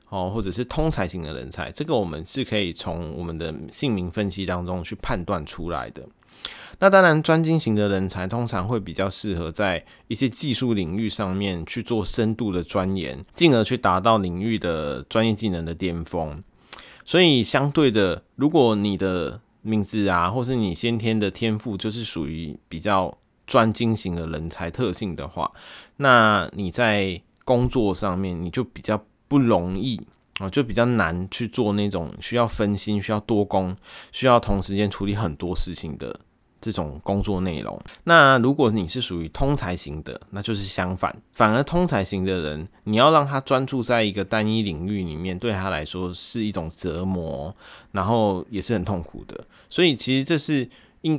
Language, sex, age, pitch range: Chinese, male, 20-39, 90-115 Hz